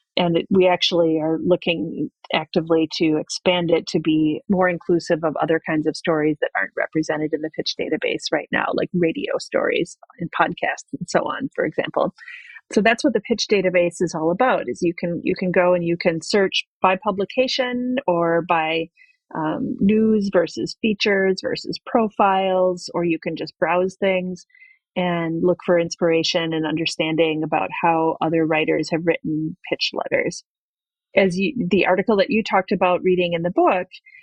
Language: English